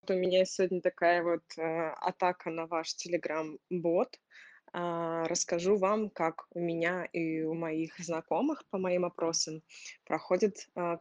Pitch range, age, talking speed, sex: 175-200 Hz, 20-39, 140 wpm, female